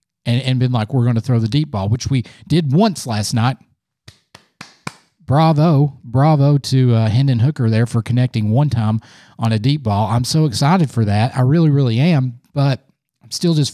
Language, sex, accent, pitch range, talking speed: English, male, American, 115-140 Hz, 190 wpm